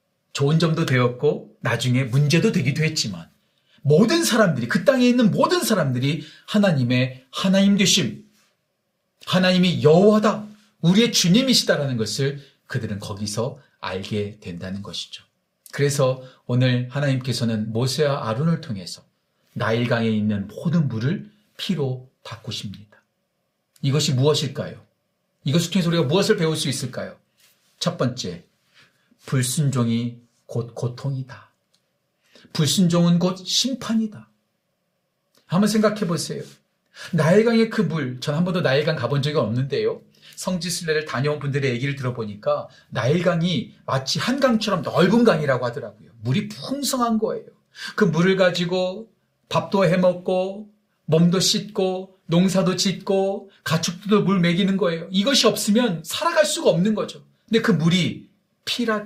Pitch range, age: 130-195 Hz, 40-59